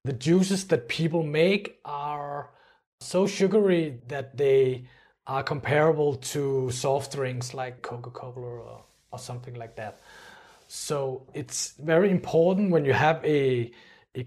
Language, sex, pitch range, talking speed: English, male, 135-165 Hz, 130 wpm